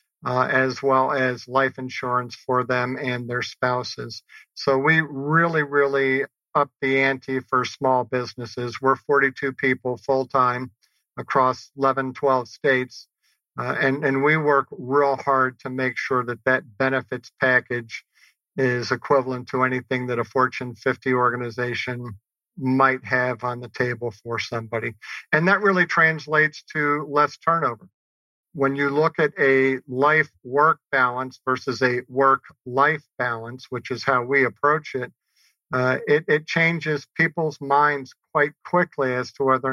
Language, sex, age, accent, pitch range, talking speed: English, male, 50-69, American, 125-140 Hz, 140 wpm